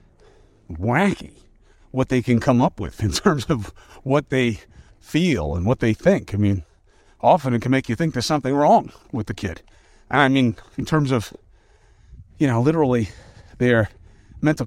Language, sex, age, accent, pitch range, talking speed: English, male, 40-59, American, 105-145 Hz, 170 wpm